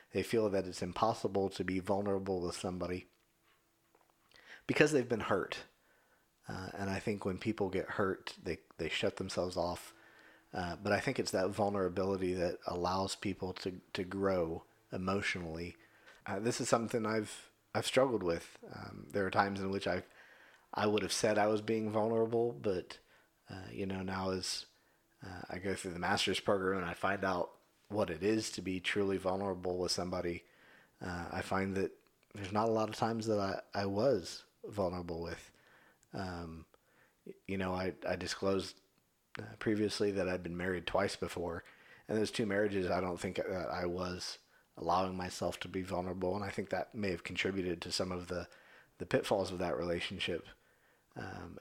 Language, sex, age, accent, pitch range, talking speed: English, male, 40-59, American, 90-100 Hz, 175 wpm